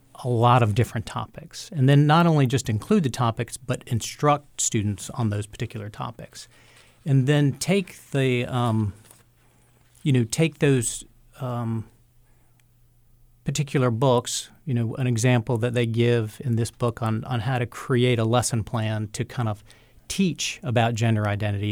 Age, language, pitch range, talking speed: 40-59, English, 110-130 Hz, 155 wpm